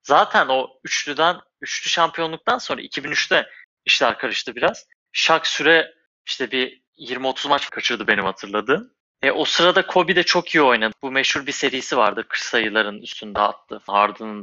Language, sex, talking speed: Turkish, male, 150 wpm